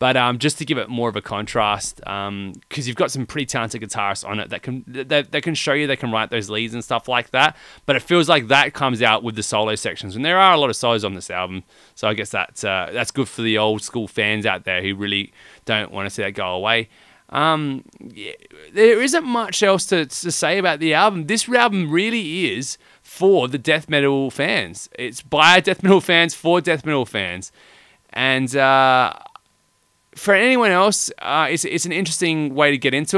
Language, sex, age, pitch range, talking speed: English, male, 20-39, 115-170 Hz, 225 wpm